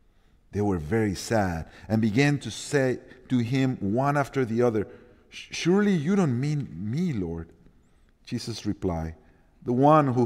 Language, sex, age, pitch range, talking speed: English, male, 50-69, 95-145 Hz, 145 wpm